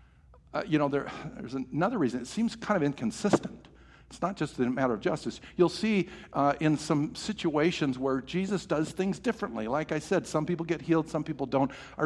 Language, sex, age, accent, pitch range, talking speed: English, male, 60-79, American, 120-170 Hz, 200 wpm